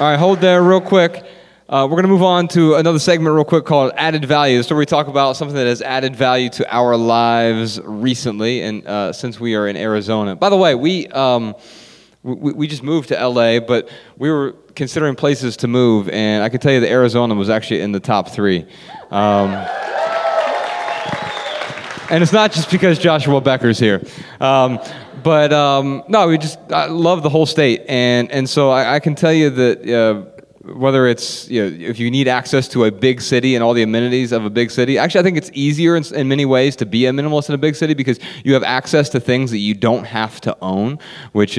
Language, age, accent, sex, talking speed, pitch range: English, 30-49, American, male, 215 wpm, 110-150 Hz